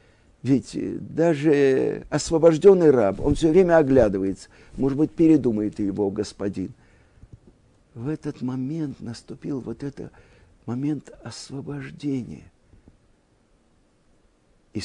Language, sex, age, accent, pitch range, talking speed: Russian, male, 50-69, native, 105-160 Hz, 90 wpm